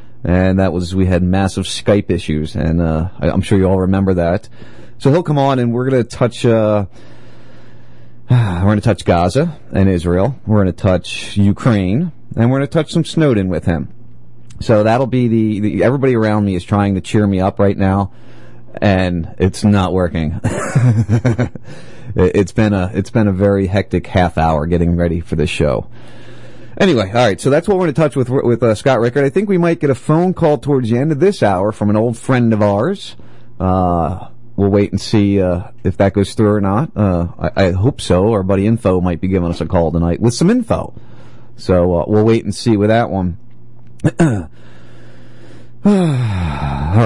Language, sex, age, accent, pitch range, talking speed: English, male, 30-49, American, 90-120 Hz, 200 wpm